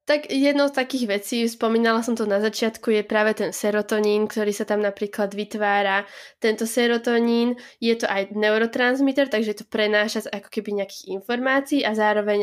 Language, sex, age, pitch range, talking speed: Slovak, female, 20-39, 205-235 Hz, 170 wpm